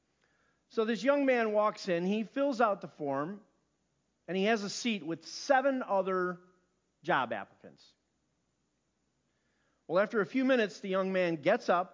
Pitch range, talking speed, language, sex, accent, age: 165-225 Hz, 155 wpm, English, male, American, 50-69